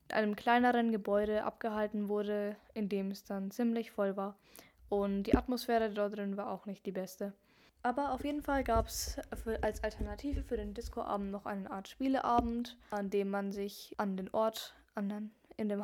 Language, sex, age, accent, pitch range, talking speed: German, female, 10-29, German, 205-235 Hz, 175 wpm